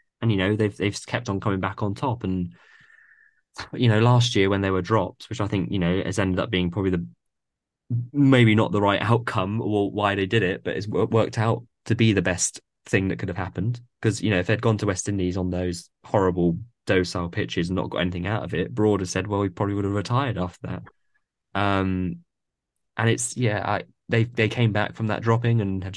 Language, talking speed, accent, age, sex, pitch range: English, 230 wpm, British, 20-39, male, 90-115 Hz